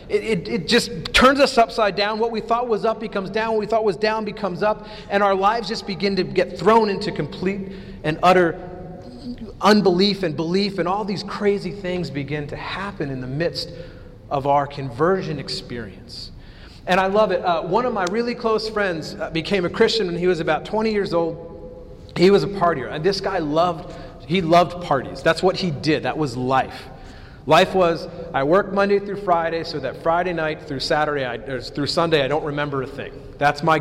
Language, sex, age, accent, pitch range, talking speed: English, male, 30-49, American, 145-200 Hz, 205 wpm